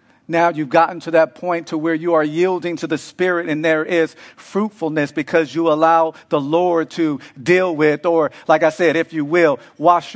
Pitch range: 150-175 Hz